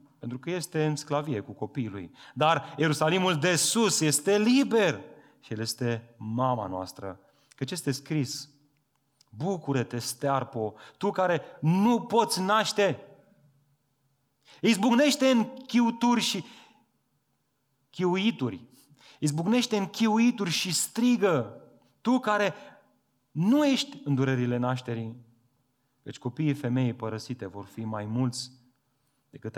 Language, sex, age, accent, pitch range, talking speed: Romanian, male, 30-49, native, 120-160 Hz, 115 wpm